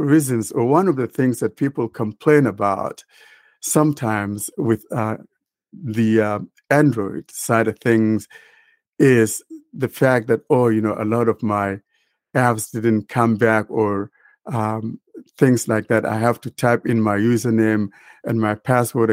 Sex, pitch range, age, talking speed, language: male, 110-130 Hz, 60-79, 155 wpm, English